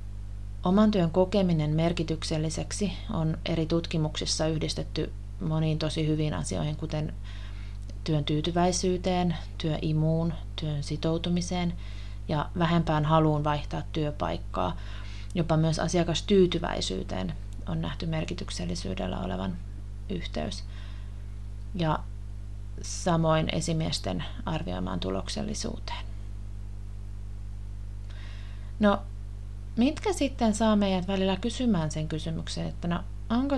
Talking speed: 85 wpm